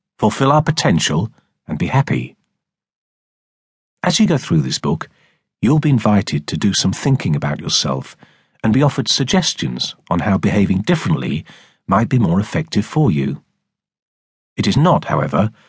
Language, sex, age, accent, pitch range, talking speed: English, male, 50-69, British, 100-155 Hz, 150 wpm